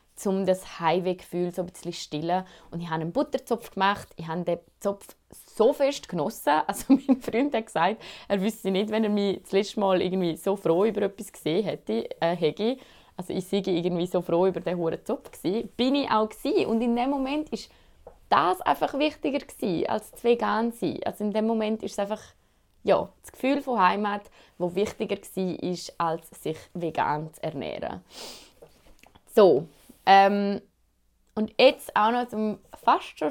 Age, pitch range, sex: 20-39, 175-230 Hz, female